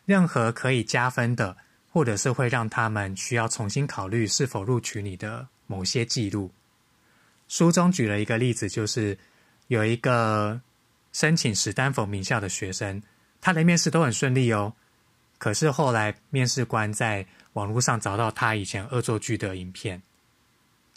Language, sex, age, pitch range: Chinese, male, 20-39, 105-130 Hz